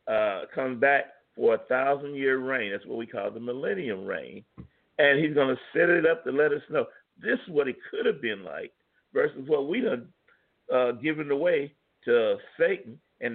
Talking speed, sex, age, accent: 200 wpm, male, 50-69, American